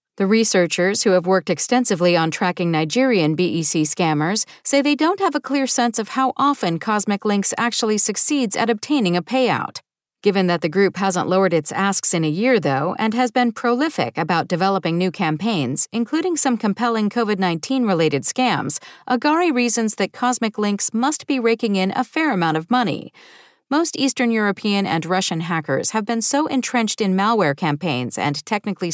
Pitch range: 180-250 Hz